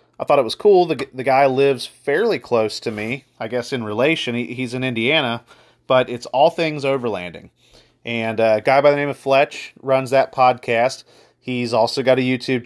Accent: American